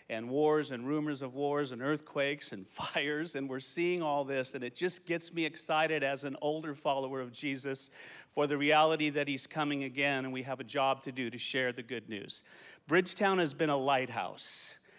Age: 40-59